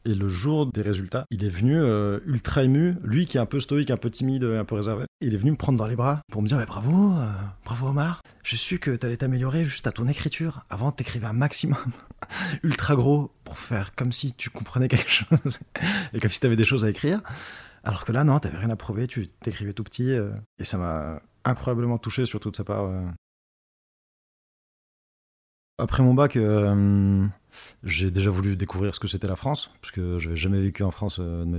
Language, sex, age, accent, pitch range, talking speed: French, male, 20-39, French, 100-125 Hz, 225 wpm